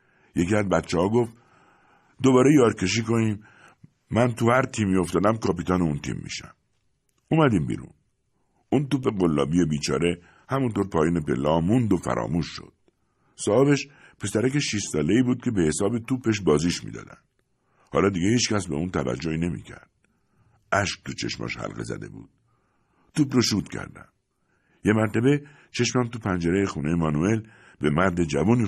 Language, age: Persian, 60-79